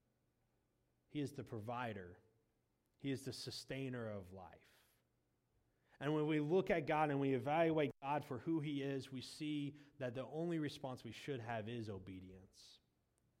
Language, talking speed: English, 155 wpm